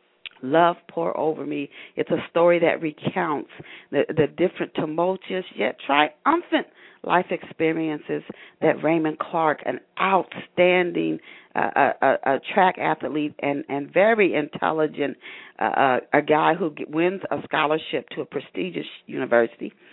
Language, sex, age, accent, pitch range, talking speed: English, female, 40-59, American, 140-180 Hz, 130 wpm